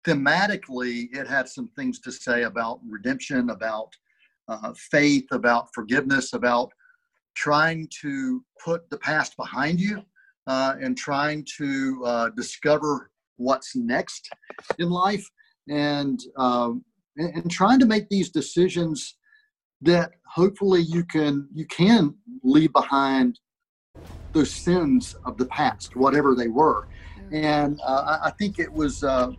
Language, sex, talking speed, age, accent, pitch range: English, male, 130 wpm, 50-69, American, 130-180 Hz